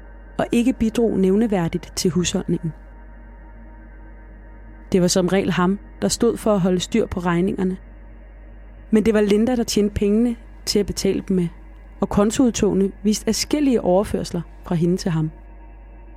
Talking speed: 150 wpm